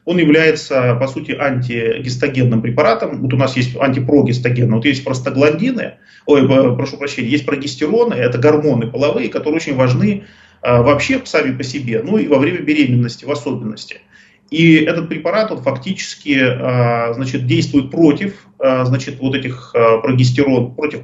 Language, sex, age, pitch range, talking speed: Russian, male, 30-49, 125-160 Hz, 150 wpm